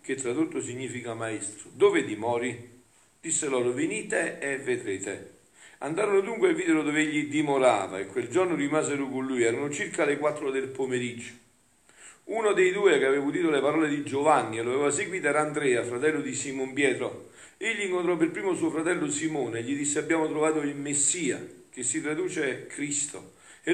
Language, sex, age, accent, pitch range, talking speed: Italian, male, 50-69, native, 130-190 Hz, 175 wpm